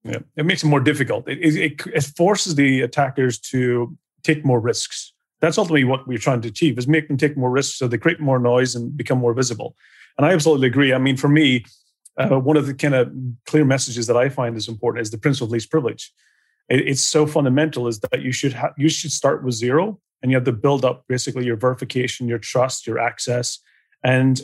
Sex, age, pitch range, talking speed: male, 30-49, 125-150 Hz, 230 wpm